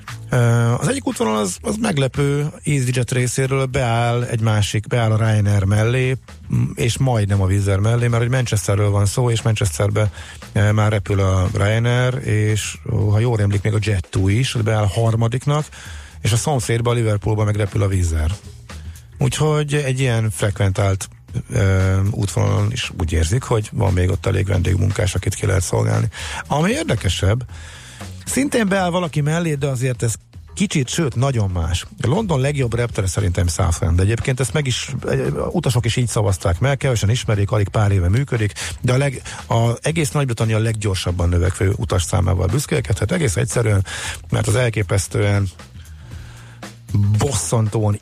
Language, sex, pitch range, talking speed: Hungarian, male, 100-125 Hz, 150 wpm